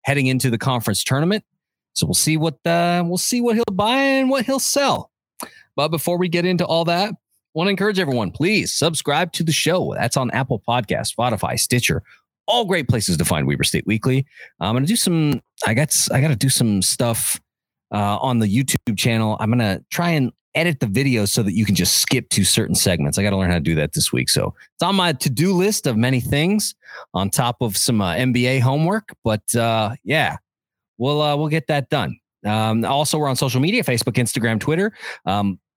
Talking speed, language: 215 wpm, English